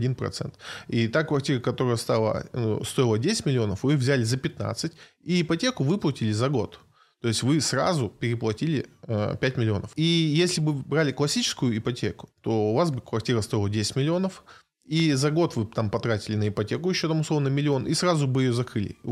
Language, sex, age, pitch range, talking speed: Russian, male, 20-39, 115-150 Hz, 180 wpm